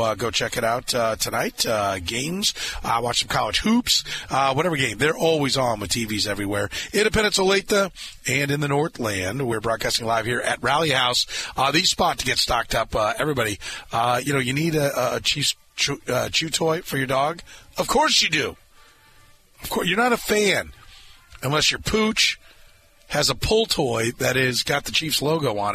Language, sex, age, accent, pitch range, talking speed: English, male, 30-49, American, 125-175 Hz, 195 wpm